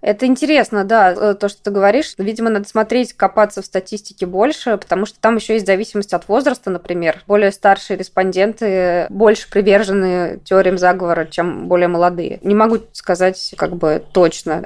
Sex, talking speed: female, 160 wpm